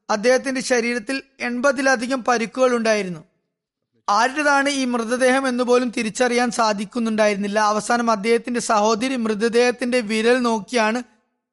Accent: native